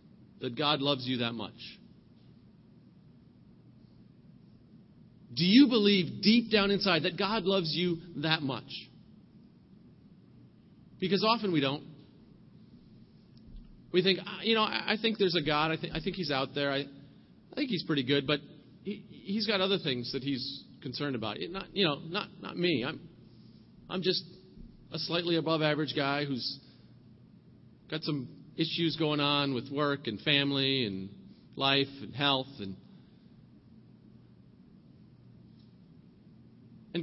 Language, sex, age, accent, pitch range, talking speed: English, male, 40-59, American, 135-190 Hz, 130 wpm